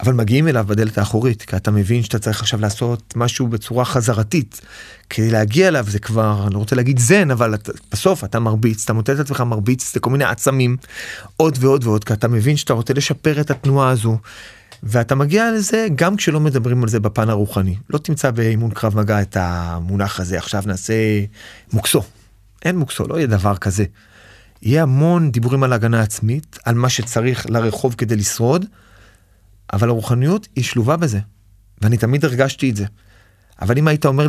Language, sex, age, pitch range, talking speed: Hebrew, male, 30-49, 105-145 Hz, 170 wpm